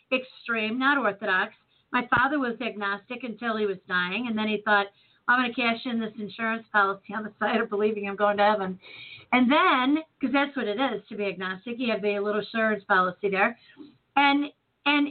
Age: 40-59